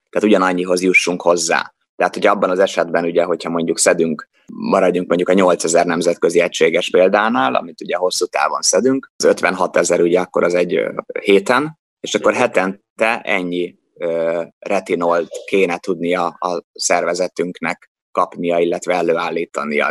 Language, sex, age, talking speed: Hungarian, male, 20-39, 140 wpm